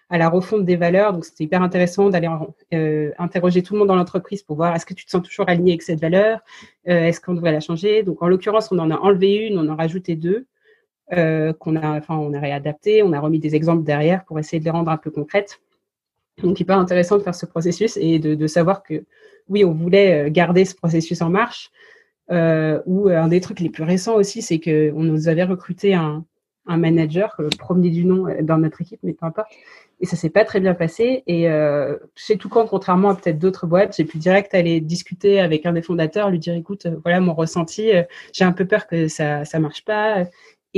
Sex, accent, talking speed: female, French, 240 wpm